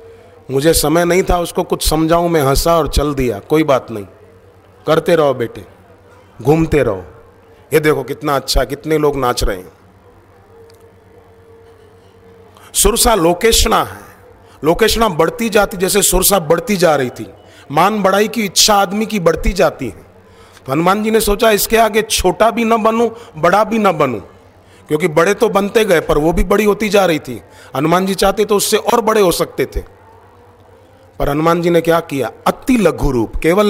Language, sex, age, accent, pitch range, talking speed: Hindi, male, 40-59, native, 130-205 Hz, 175 wpm